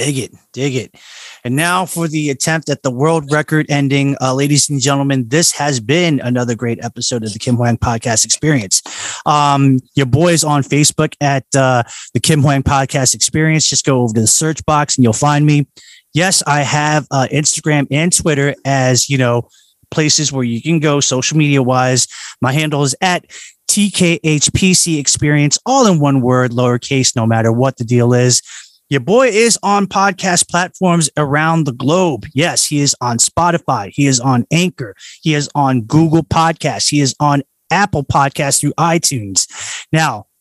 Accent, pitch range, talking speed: American, 130-160 Hz, 175 wpm